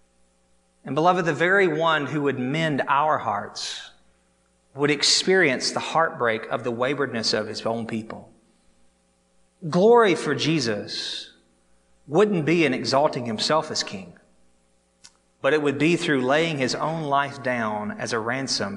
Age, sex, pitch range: 30-49, male, 110-160 Hz